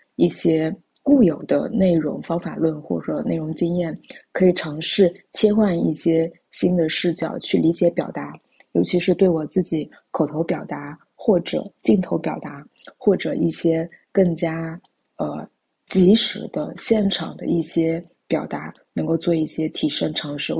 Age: 20-39